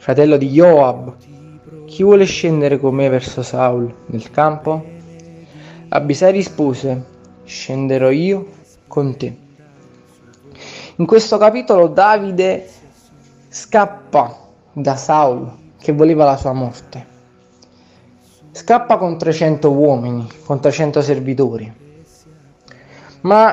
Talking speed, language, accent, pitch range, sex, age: 95 wpm, Italian, native, 140-190 Hz, male, 20-39